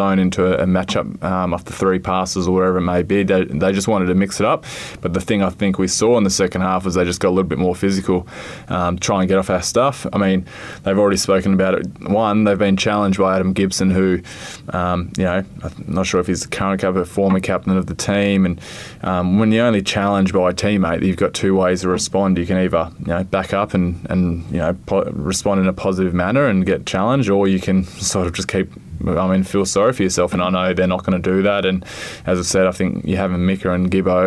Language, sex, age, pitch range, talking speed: English, male, 20-39, 90-100 Hz, 260 wpm